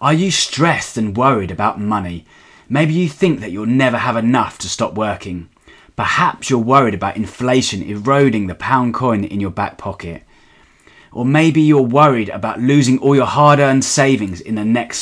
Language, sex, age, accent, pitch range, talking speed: English, male, 20-39, British, 105-140 Hz, 175 wpm